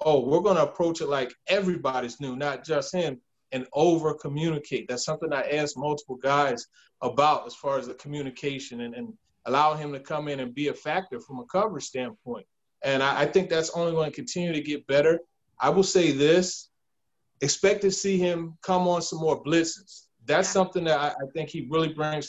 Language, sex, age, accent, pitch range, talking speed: English, male, 30-49, American, 145-175 Hz, 200 wpm